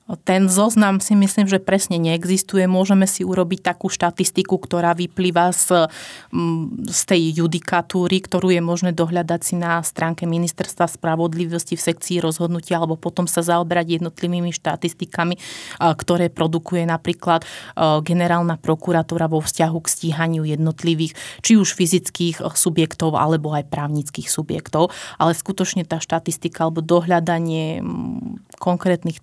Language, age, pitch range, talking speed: Slovak, 30-49, 165-180 Hz, 125 wpm